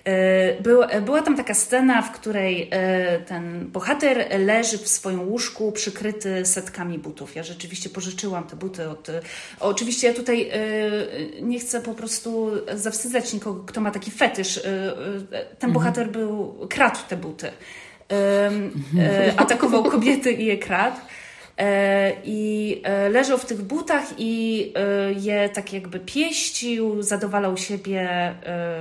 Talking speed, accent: 120 wpm, native